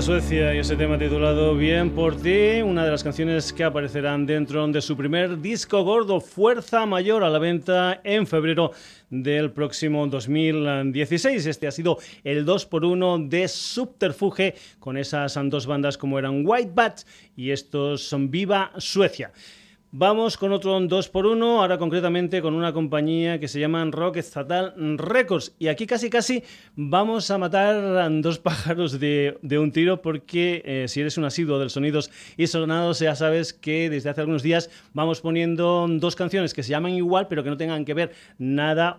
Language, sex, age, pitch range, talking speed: Spanish, male, 30-49, 145-180 Hz, 175 wpm